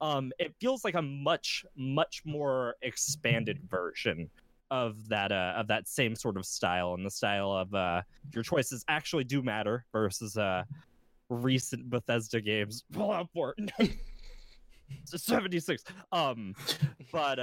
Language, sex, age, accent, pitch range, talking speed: English, male, 20-39, American, 115-150 Hz, 140 wpm